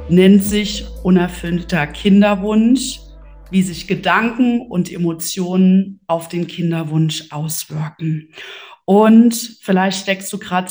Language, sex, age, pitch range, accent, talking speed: German, female, 30-49, 180-220 Hz, German, 100 wpm